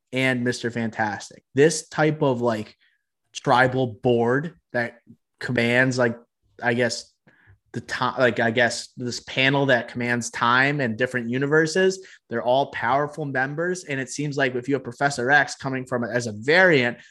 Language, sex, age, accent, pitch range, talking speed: English, male, 20-39, American, 120-145 Hz, 160 wpm